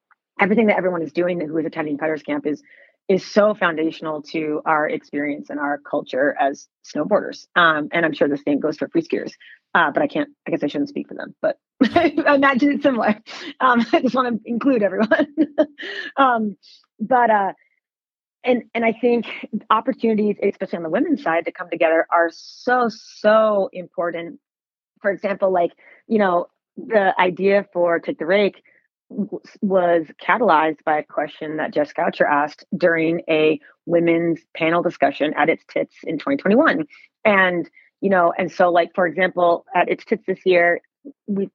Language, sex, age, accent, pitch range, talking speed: English, female, 30-49, American, 165-220 Hz, 170 wpm